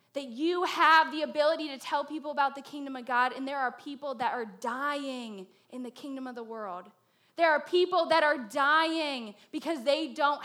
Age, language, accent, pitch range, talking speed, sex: 10-29, English, American, 260-335 Hz, 200 wpm, female